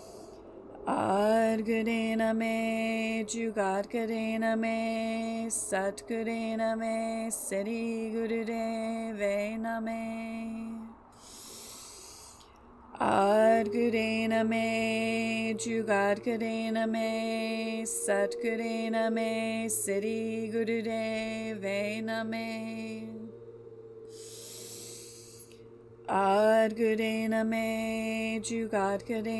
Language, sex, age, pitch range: English, female, 30-49, 195-225 Hz